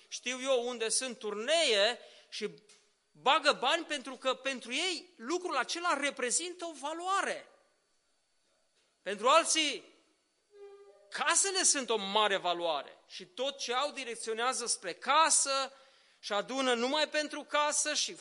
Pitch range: 225-320 Hz